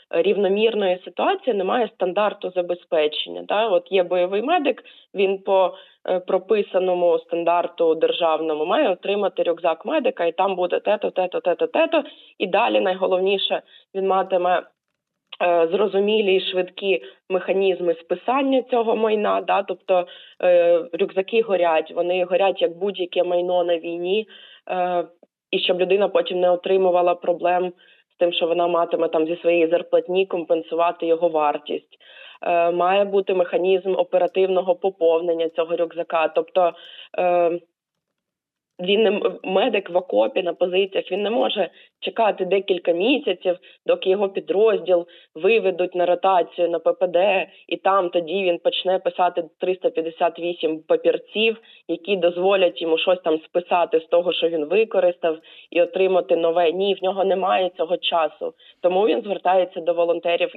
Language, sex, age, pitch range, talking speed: Ukrainian, female, 20-39, 170-195 Hz, 130 wpm